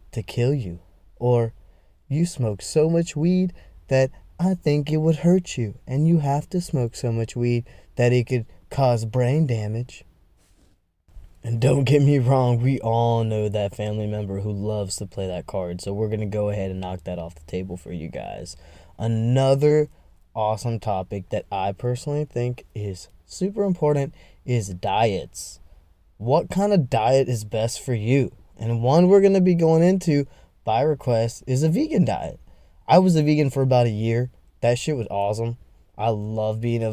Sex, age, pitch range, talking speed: male, 10-29, 100-125 Hz, 180 wpm